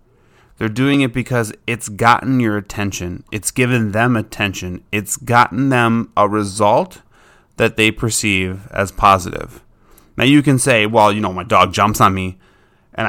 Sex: male